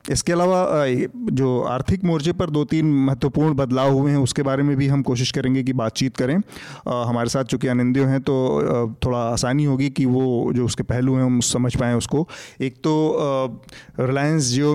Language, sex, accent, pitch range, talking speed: Hindi, male, native, 125-145 Hz, 185 wpm